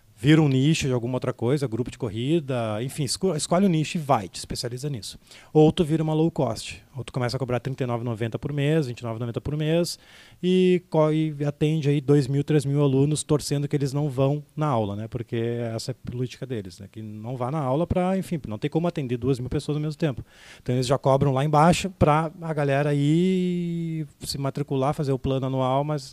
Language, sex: Portuguese, male